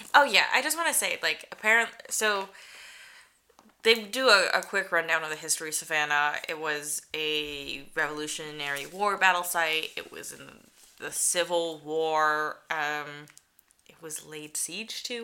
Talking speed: 160 wpm